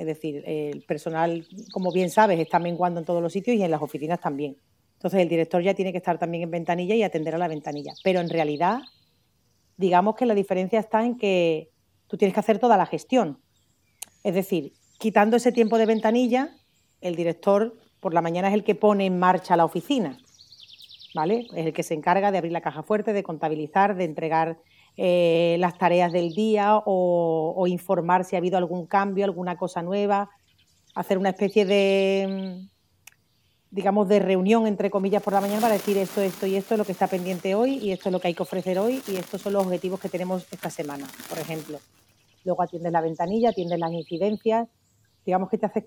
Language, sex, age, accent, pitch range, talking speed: Spanish, female, 40-59, Spanish, 165-200 Hz, 205 wpm